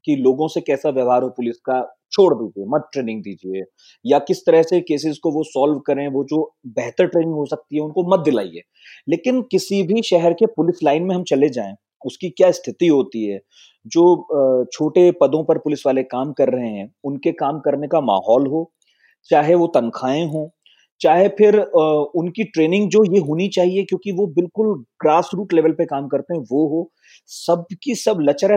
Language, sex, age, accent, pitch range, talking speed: Hindi, male, 30-49, native, 140-195 Hz, 195 wpm